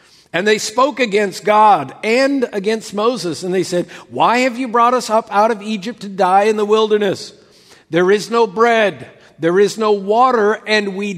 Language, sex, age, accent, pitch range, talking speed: English, male, 50-69, American, 190-245 Hz, 190 wpm